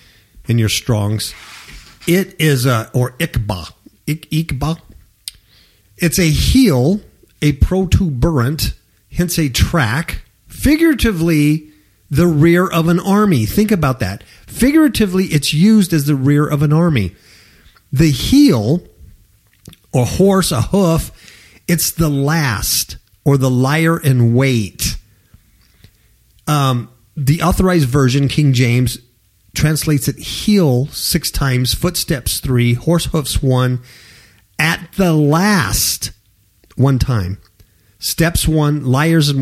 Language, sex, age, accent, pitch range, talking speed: English, male, 50-69, American, 110-165 Hz, 115 wpm